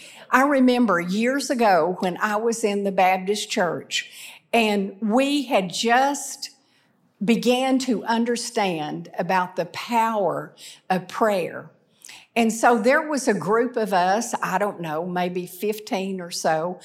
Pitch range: 175-235 Hz